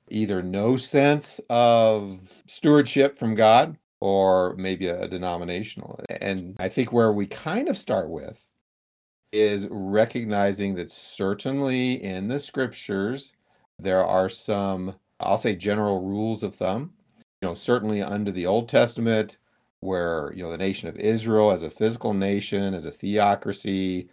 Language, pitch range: English, 95-110 Hz